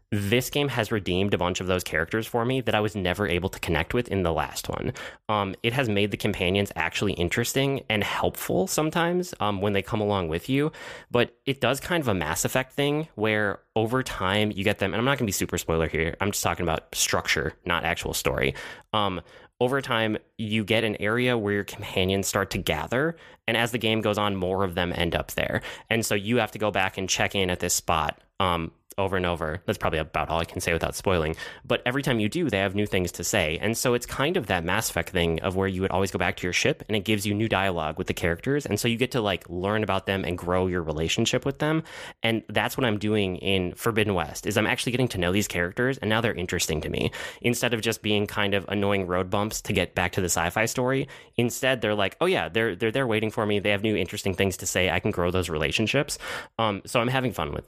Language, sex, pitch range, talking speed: English, male, 90-115 Hz, 255 wpm